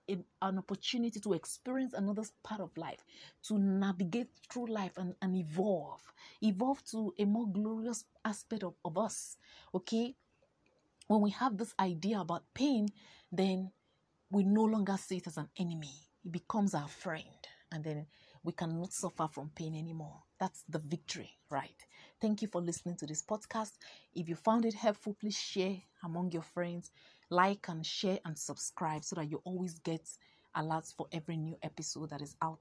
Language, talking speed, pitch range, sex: English, 170 wpm, 165-220 Hz, female